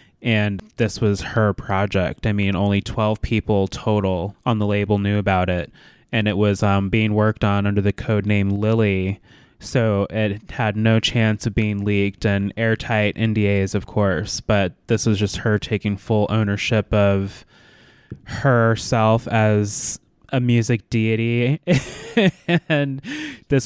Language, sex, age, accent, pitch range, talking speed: English, male, 20-39, American, 100-115 Hz, 145 wpm